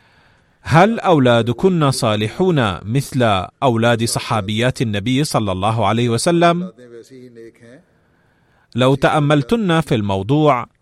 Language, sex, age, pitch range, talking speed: Arabic, male, 30-49, 115-140 Hz, 90 wpm